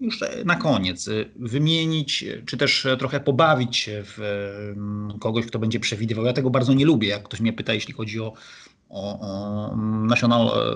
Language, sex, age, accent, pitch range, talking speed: Polish, male, 40-59, native, 120-155 Hz, 155 wpm